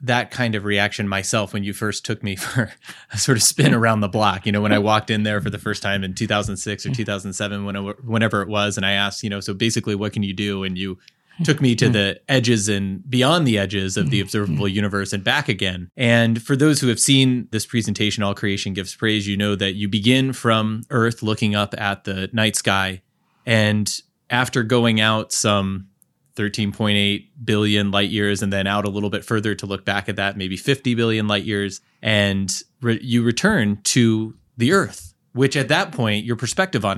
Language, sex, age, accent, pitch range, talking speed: English, male, 20-39, American, 100-120 Hz, 210 wpm